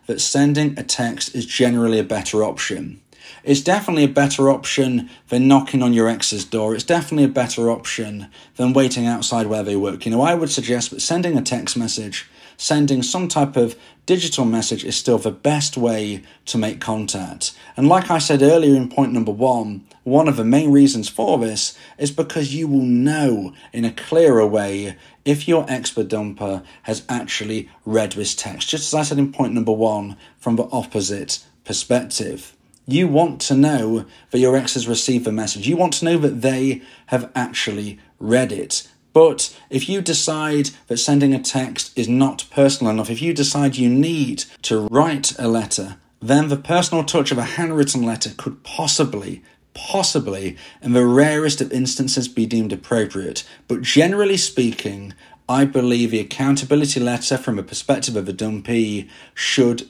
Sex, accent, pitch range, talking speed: male, British, 110-145 Hz, 175 wpm